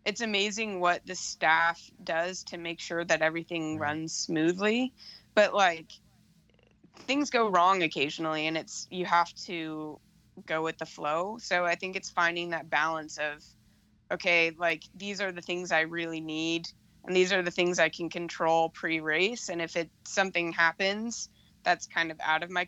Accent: American